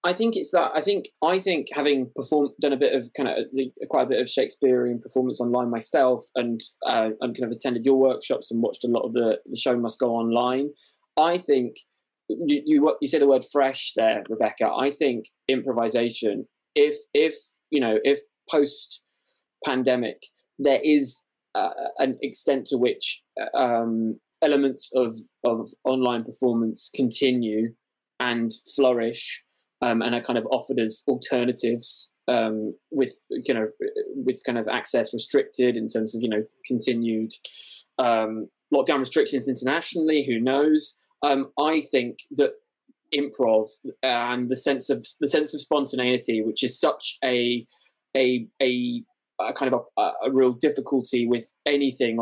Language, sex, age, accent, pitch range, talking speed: English, male, 20-39, British, 115-145 Hz, 160 wpm